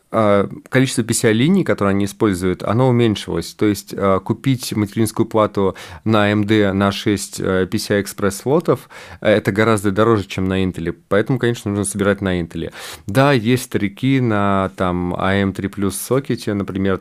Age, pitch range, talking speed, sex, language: 30-49, 95-115 Hz, 130 wpm, male, Russian